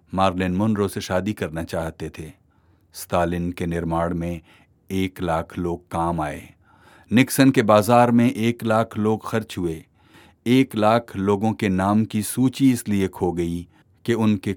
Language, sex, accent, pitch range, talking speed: Hindi, male, native, 90-120 Hz, 150 wpm